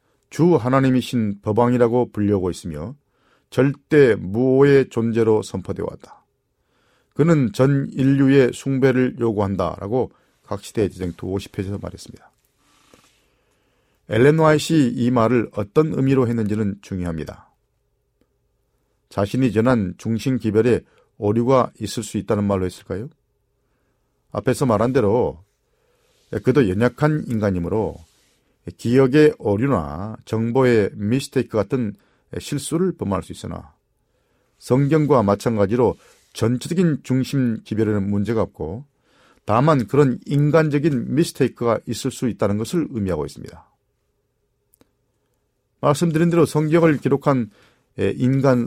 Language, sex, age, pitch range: Korean, male, 40-59, 105-135 Hz